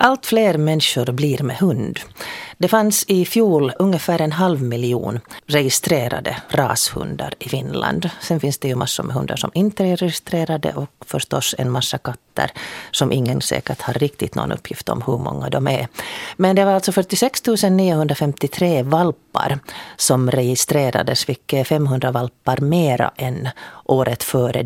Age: 40-59